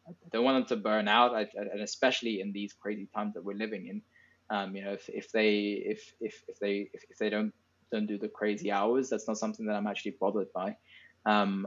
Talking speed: 230 wpm